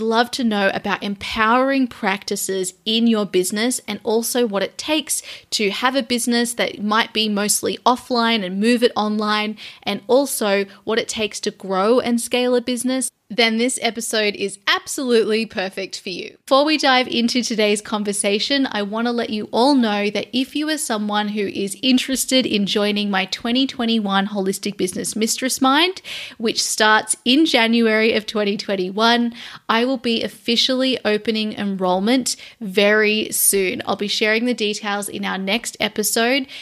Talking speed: 160 wpm